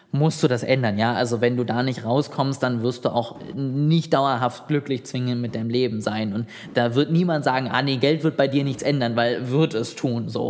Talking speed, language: 235 wpm, German